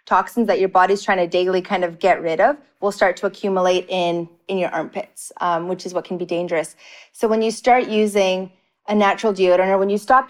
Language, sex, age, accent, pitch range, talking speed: English, female, 30-49, American, 185-215 Hz, 225 wpm